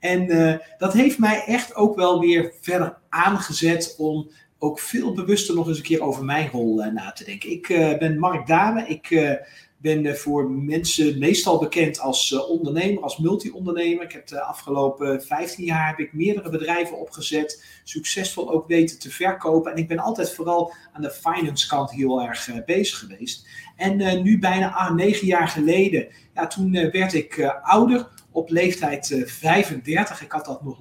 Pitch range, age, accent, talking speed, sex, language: 140-180 Hz, 40-59, Dutch, 190 wpm, male, Dutch